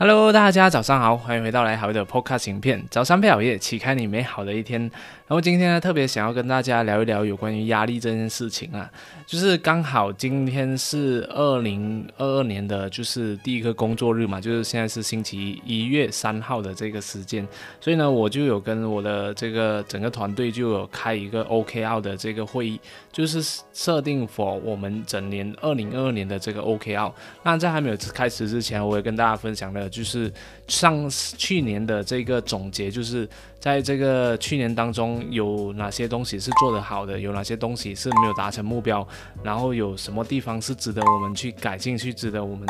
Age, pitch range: 20-39, 105-135 Hz